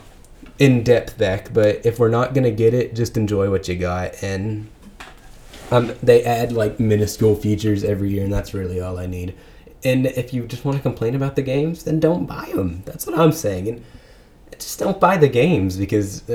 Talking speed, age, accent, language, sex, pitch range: 200 wpm, 20-39, American, English, male, 95-125 Hz